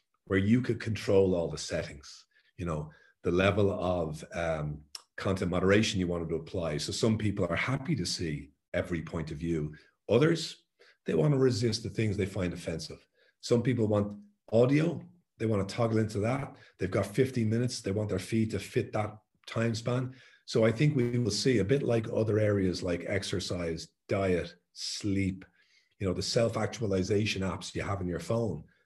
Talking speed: 180 wpm